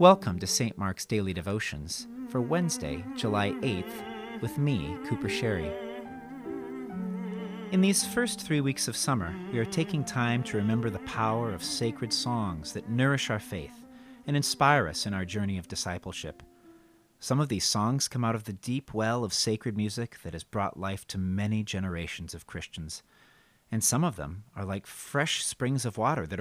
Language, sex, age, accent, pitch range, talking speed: English, male, 40-59, American, 95-135 Hz, 175 wpm